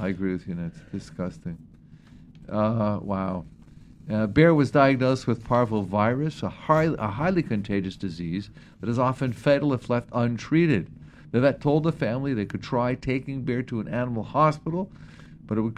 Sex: male